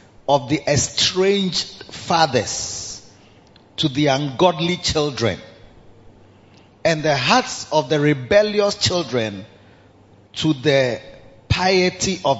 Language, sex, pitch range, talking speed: English, male, 105-155 Hz, 90 wpm